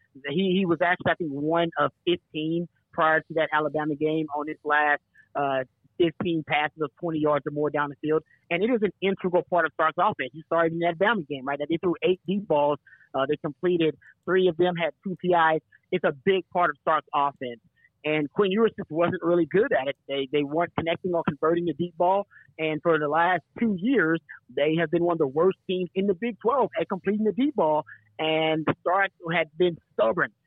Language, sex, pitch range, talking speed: English, male, 150-185 Hz, 220 wpm